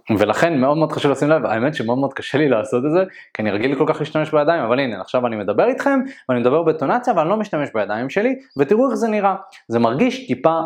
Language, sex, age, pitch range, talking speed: Hebrew, male, 20-39, 120-165 Hz, 240 wpm